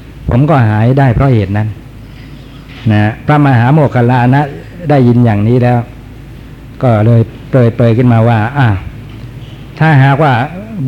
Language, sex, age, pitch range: Thai, male, 60-79, 115-135 Hz